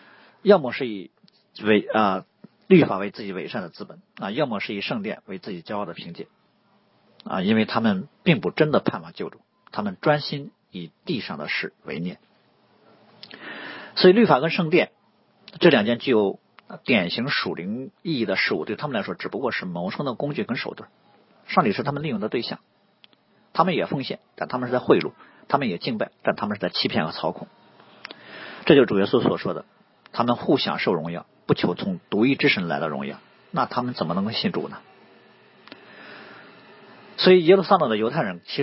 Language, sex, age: Chinese, male, 50-69